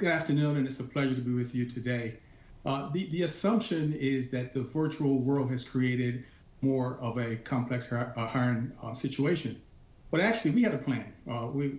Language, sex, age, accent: English, male, 50-69, American